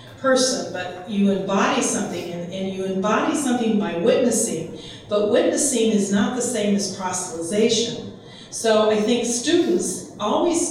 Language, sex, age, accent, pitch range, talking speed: English, female, 40-59, American, 190-230 Hz, 140 wpm